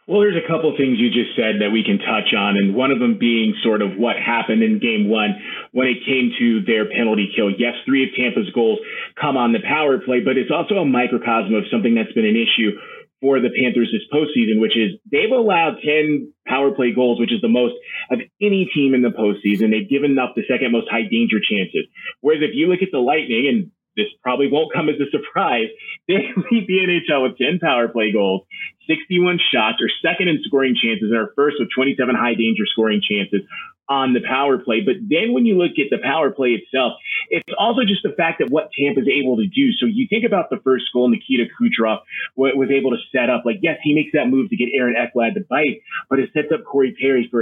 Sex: male